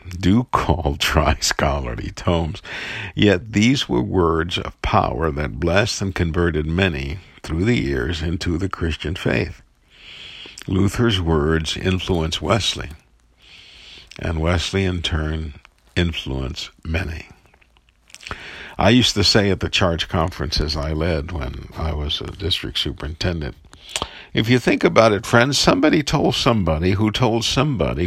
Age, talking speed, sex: 60-79, 130 wpm, male